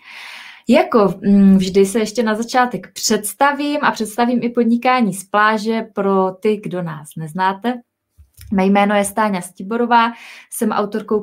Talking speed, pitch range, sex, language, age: 135 wpm, 195-235 Hz, female, Czech, 20-39